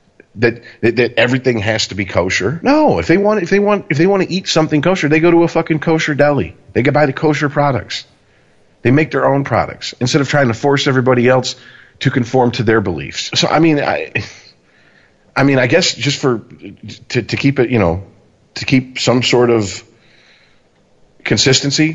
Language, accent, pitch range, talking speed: English, American, 115-150 Hz, 200 wpm